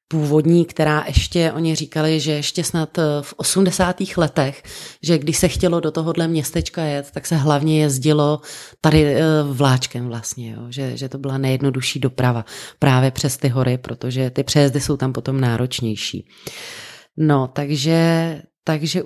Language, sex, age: Czech, female, 30-49